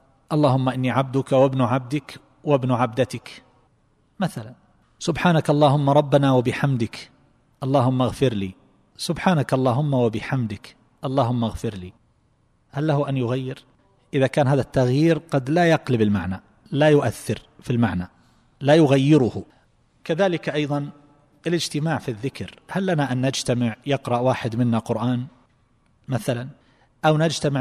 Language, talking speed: Arabic, 120 wpm